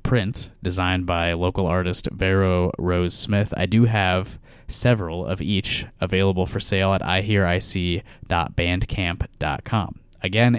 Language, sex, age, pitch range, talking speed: English, male, 20-39, 90-115 Hz, 115 wpm